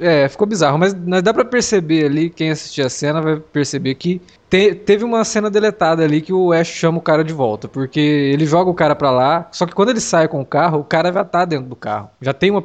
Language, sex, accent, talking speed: Portuguese, male, Brazilian, 255 wpm